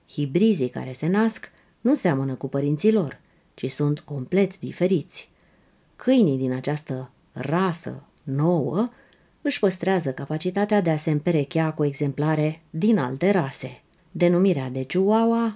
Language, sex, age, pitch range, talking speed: Romanian, female, 30-49, 140-180 Hz, 125 wpm